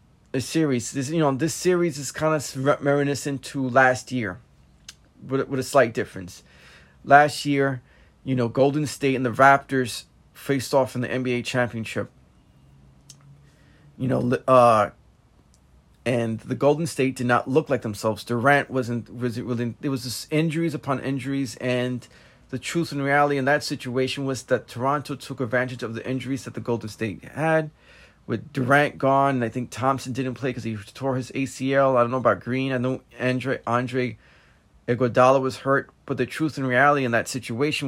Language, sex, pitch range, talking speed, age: English, male, 120-140 Hz, 180 wpm, 30-49